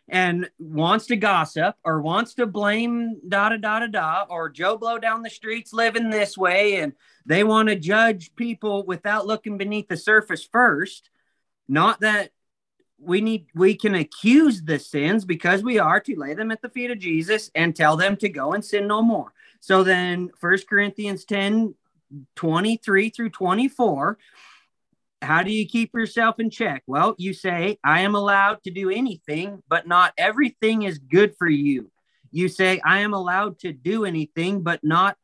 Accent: American